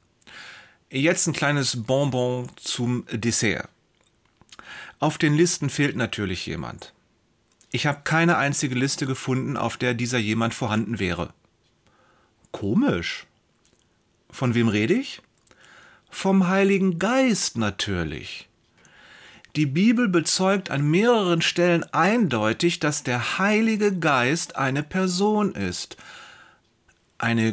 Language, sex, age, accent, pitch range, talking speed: German, male, 40-59, German, 115-165 Hz, 105 wpm